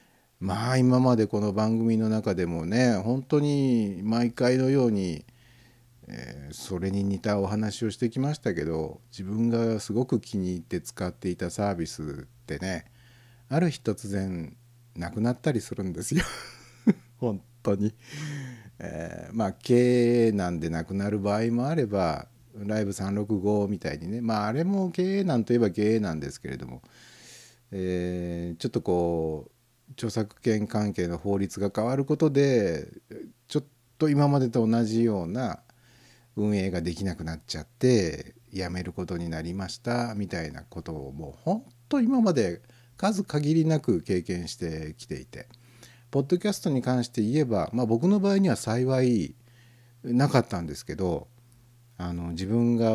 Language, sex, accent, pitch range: Japanese, male, native, 95-125 Hz